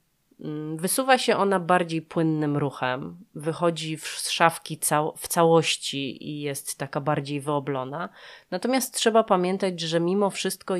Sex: female